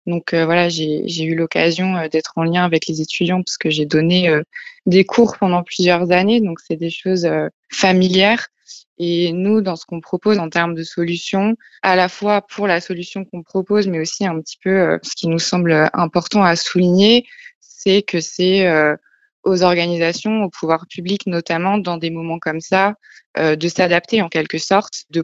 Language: French